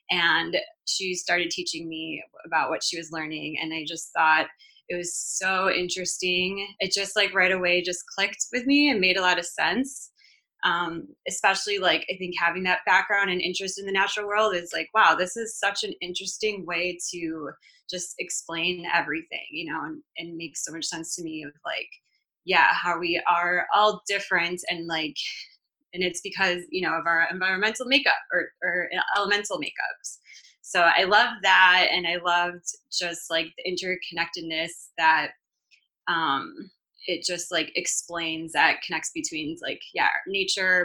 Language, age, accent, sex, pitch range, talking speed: English, 20-39, American, female, 165-195 Hz, 170 wpm